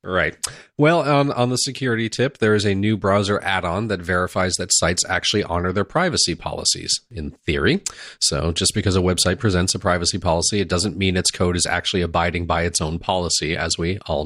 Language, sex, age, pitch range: English, male, 30-49, 85-105 Hz